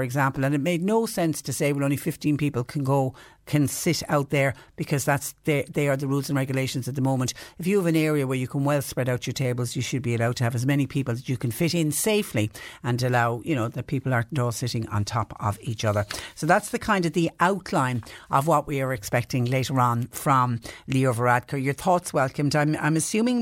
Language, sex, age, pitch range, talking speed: English, female, 60-79, 130-160 Hz, 245 wpm